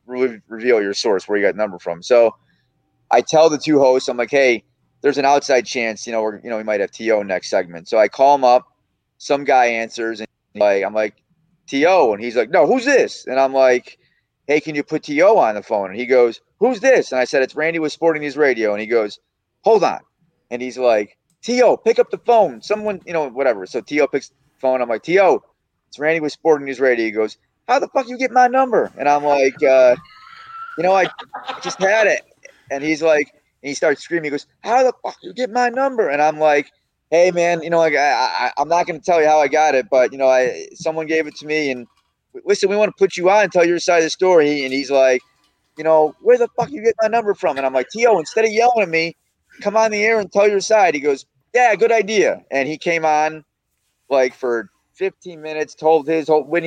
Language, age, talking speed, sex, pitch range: English, 30-49, 250 wpm, male, 130-180 Hz